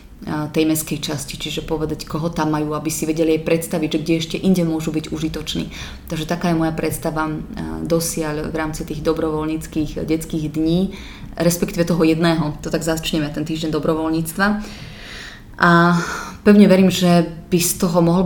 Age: 20-39